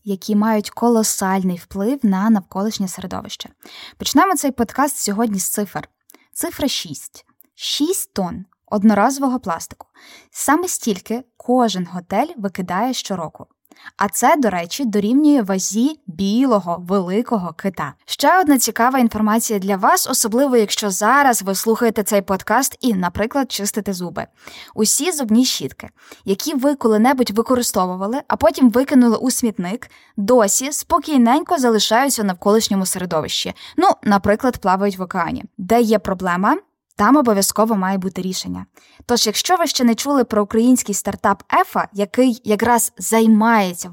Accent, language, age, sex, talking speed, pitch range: native, Ukrainian, 20-39, female, 130 wpm, 200-255 Hz